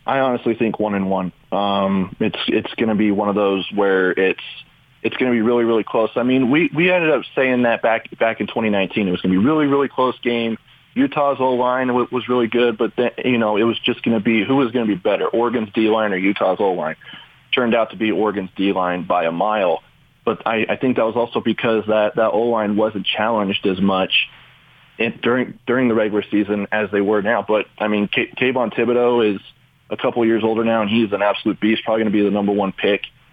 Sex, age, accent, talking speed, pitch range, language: male, 30-49, American, 245 wpm, 105-120 Hz, English